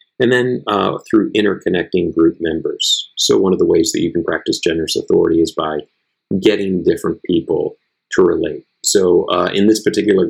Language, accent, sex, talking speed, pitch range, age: English, American, male, 175 wpm, 325-405 Hz, 50-69